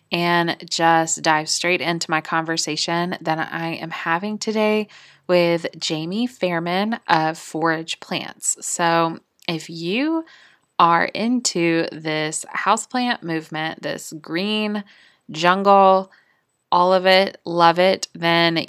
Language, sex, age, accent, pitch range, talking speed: English, female, 20-39, American, 165-195 Hz, 110 wpm